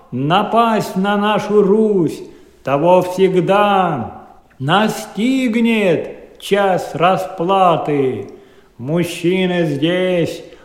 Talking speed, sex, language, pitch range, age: 60 wpm, male, Russian, 180-230 Hz, 50-69